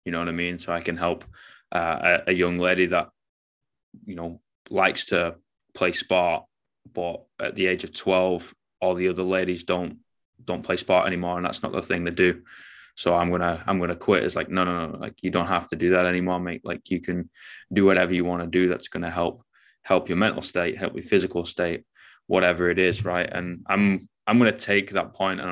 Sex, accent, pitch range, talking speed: male, British, 90-95 Hz, 225 wpm